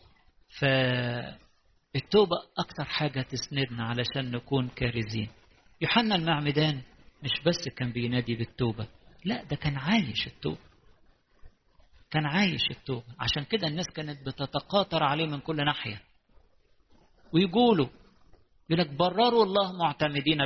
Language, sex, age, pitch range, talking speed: English, male, 50-69, 125-165 Hz, 105 wpm